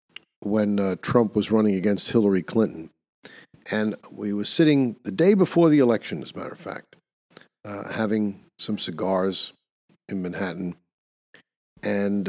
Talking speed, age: 140 wpm, 50-69